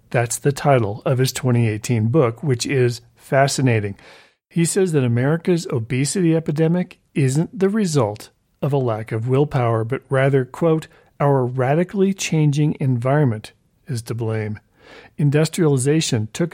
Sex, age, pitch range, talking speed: male, 40-59, 115-155 Hz, 130 wpm